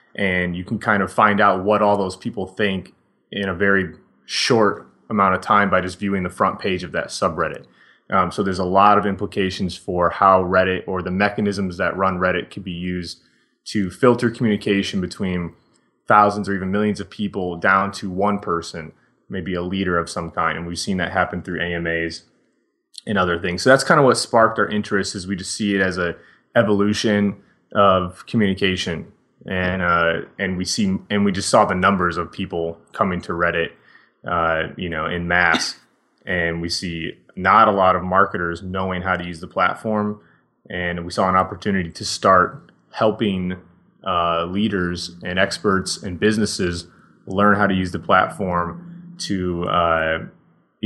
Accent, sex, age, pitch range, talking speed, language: American, male, 20-39, 90-105 Hz, 180 wpm, English